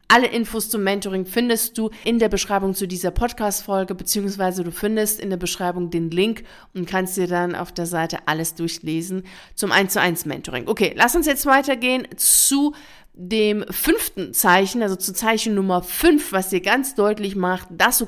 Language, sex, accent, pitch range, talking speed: German, female, German, 185-220 Hz, 185 wpm